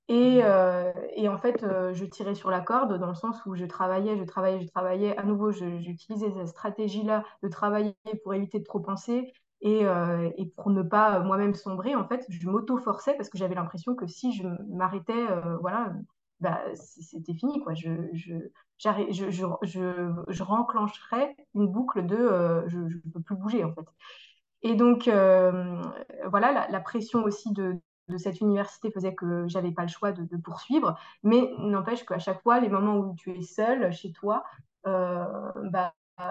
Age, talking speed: 20-39, 190 wpm